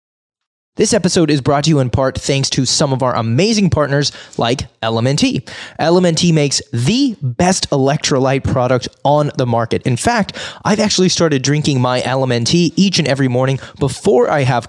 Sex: male